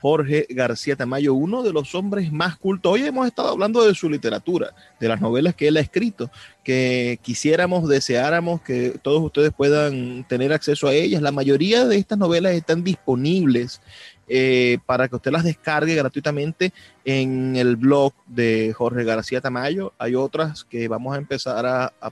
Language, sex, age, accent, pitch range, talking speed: Spanish, male, 30-49, Venezuelan, 125-160 Hz, 170 wpm